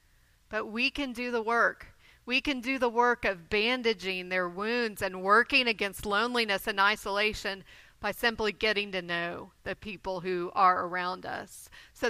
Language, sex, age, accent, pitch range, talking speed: English, female, 40-59, American, 200-235 Hz, 165 wpm